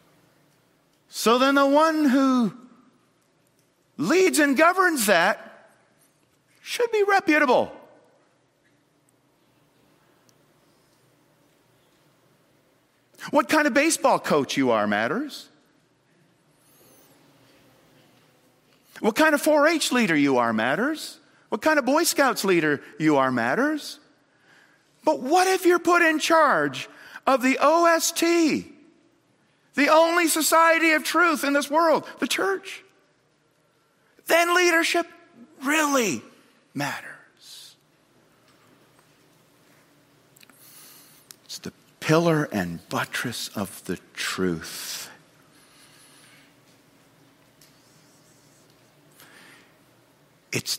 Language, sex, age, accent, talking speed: English, male, 50-69, American, 85 wpm